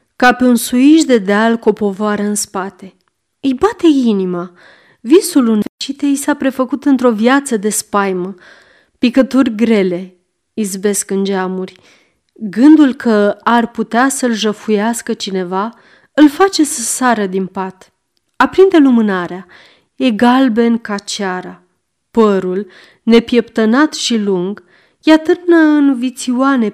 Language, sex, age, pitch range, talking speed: Romanian, female, 30-49, 195-270 Hz, 120 wpm